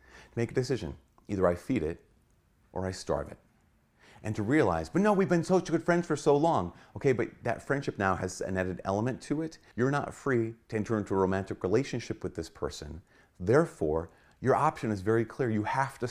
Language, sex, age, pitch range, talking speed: English, male, 40-59, 95-125 Hz, 210 wpm